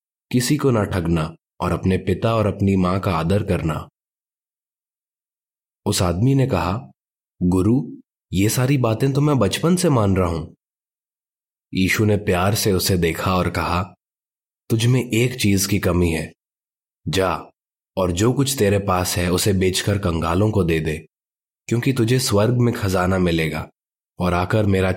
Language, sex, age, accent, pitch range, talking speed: Hindi, male, 20-39, native, 90-110 Hz, 155 wpm